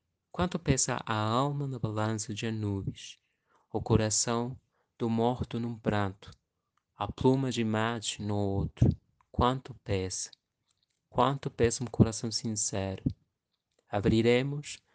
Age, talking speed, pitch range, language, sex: 20-39, 110 wpm, 105-125 Hz, Portuguese, male